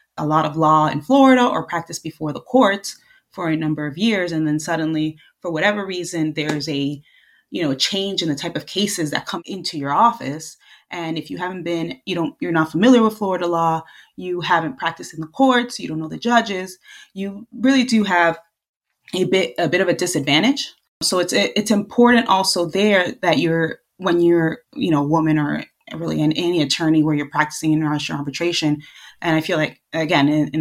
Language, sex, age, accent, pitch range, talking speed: English, female, 20-39, American, 155-185 Hz, 205 wpm